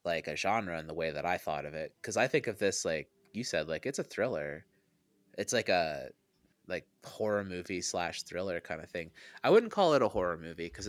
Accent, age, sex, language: American, 20-39, male, English